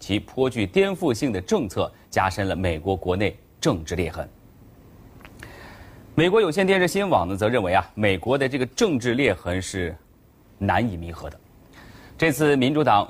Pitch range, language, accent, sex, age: 95-130 Hz, Chinese, native, male, 30-49